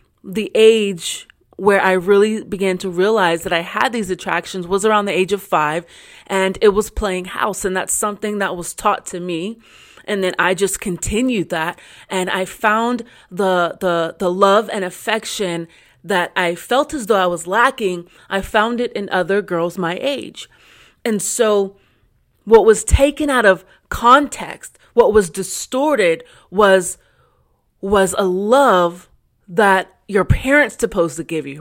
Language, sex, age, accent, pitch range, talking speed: English, female, 30-49, American, 190-235 Hz, 160 wpm